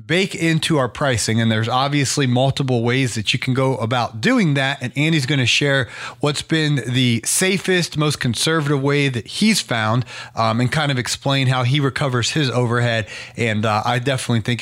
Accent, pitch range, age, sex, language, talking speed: American, 115-150 Hz, 30-49, male, English, 190 wpm